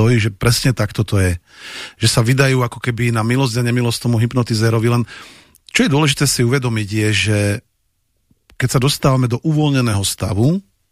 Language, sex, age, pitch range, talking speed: Slovak, male, 40-59, 105-130 Hz, 165 wpm